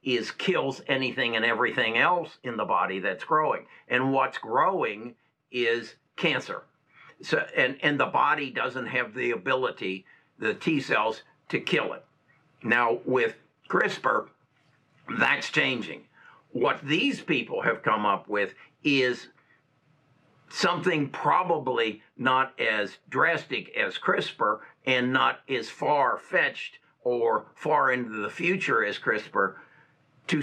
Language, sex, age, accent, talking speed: English, male, 60-79, American, 125 wpm